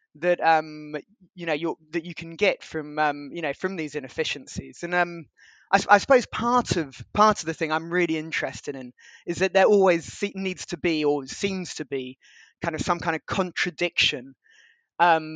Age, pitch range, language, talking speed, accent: 20-39, 155-185 Hz, English, 190 wpm, British